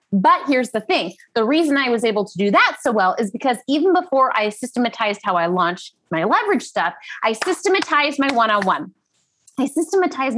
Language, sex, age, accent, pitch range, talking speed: English, female, 20-39, American, 215-290 Hz, 185 wpm